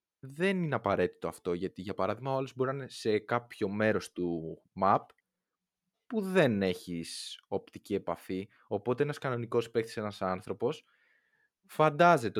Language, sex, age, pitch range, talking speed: Greek, male, 20-39, 95-130 Hz, 135 wpm